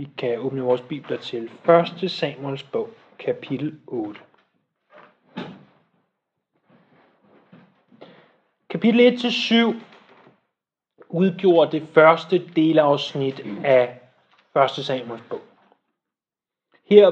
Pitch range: 145-200 Hz